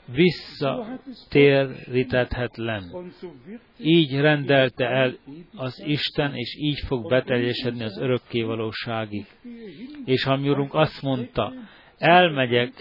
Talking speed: 80 wpm